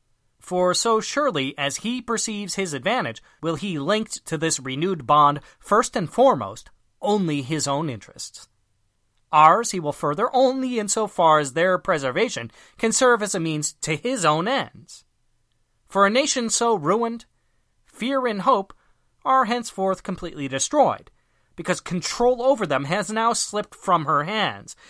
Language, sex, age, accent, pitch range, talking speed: English, male, 30-49, American, 145-225 Hz, 155 wpm